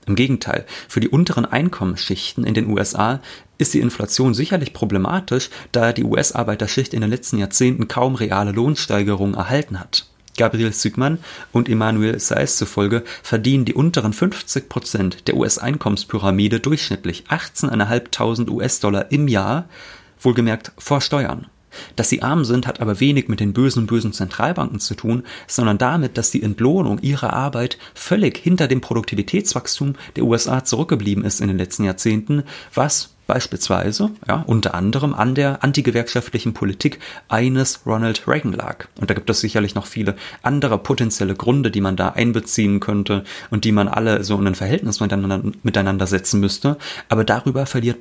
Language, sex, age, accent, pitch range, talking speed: German, male, 30-49, German, 105-130 Hz, 150 wpm